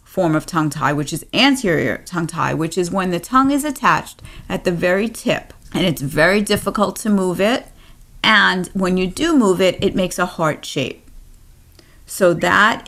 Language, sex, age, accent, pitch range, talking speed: English, female, 40-59, American, 160-190 Hz, 175 wpm